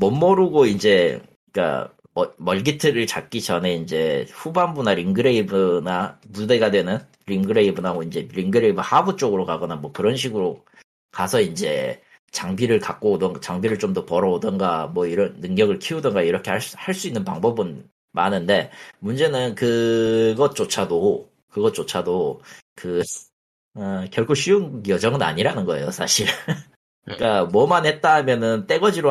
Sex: male